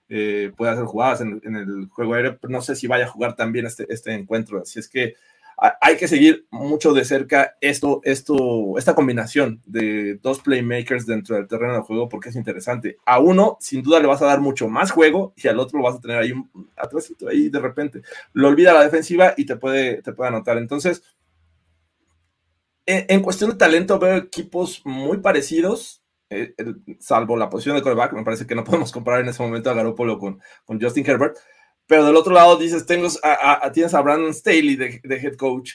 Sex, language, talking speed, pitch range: male, Spanish, 210 wpm, 115-145 Hz